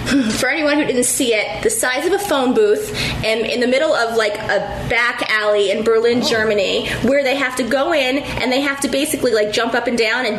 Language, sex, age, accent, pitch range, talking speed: English, female, 20-39, American, 225-295 Hz, 235 wpm